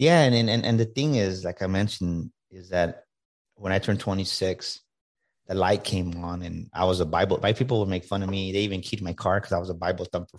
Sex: male